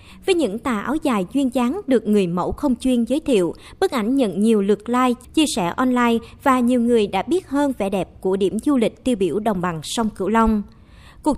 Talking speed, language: 225 wpm, Vietnamese